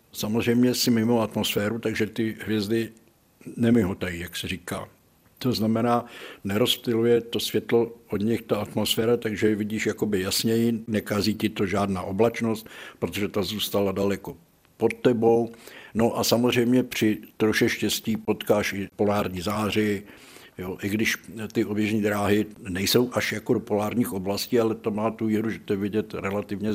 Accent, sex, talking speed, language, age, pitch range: native, male, 150 wpm, Czech, 60-79, 95-115 Hz